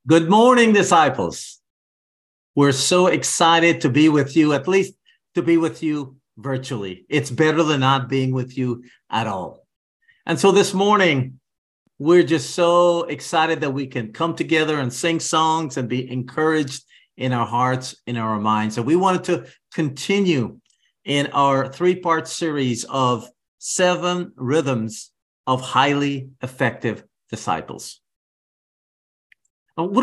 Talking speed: 135 wpm